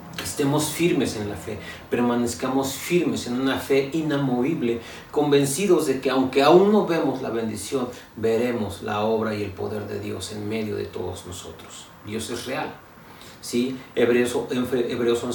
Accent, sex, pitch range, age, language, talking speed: Mexican, male, 110-160 Hz, 40-59, Spanish, 150 wpm